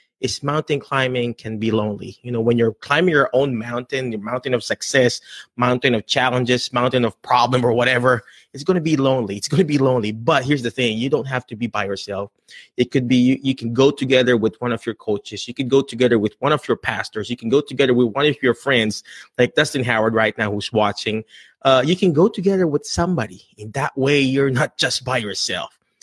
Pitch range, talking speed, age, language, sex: 115-155 Hz, 230 wpm, 30-49, English, male